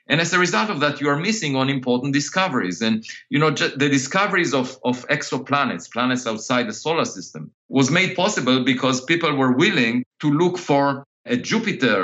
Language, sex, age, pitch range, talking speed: English, male, 50-69, 125-170 Hz, 185 wpm